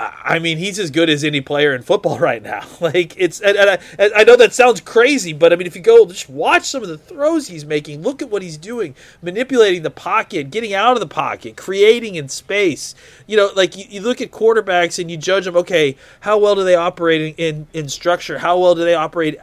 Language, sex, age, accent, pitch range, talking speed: English, male, 30-49, American, 140-185 Hz, 245 wpm